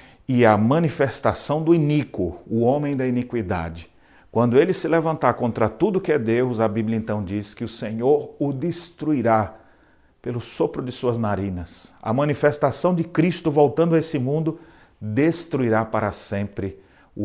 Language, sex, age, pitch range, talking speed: Portuguese, male, 40-59, 100-135 Hz, 155 wpm